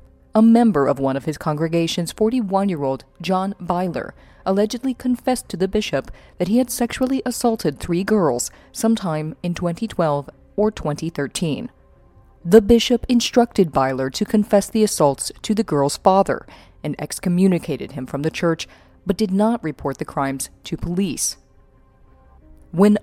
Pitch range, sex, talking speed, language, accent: 150-210 Hz, female, 140 wpm, English, American